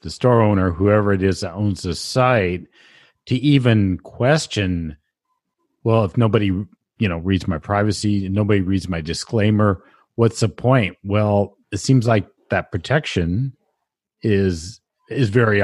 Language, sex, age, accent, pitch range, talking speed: English, male, 40-59, American, 90-115 Hz, 140 wpm